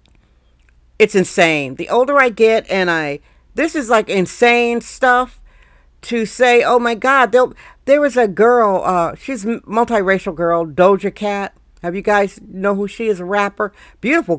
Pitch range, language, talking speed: 190-250 Hz, English, 165 wpm